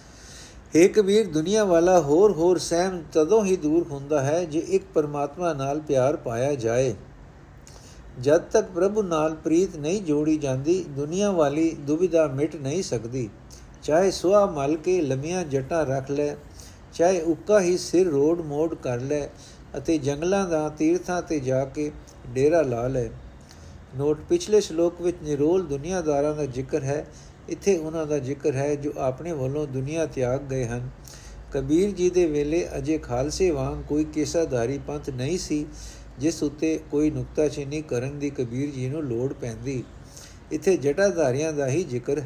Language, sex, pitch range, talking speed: Punjabi, male, 130-165 Hz, 150 wpm